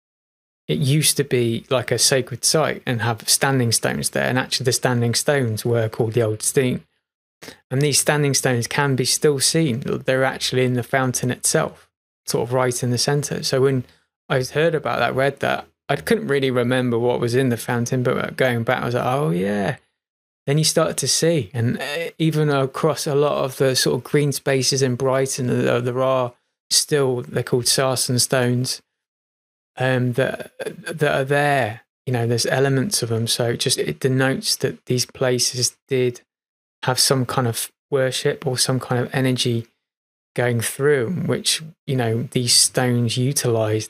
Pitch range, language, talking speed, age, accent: 120-140 Hz, English, 180 wpm, 20-39, British